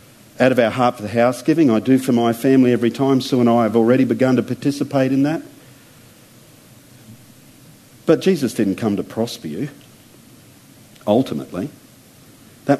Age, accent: 50-69, Australian